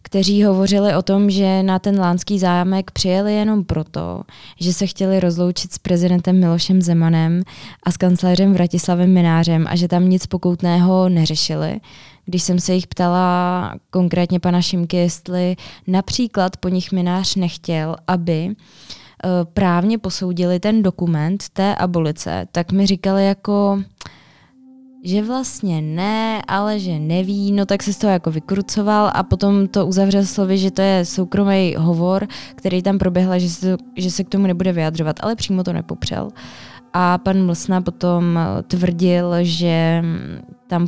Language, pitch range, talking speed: Czech, 175-195 Hz, 150 wpm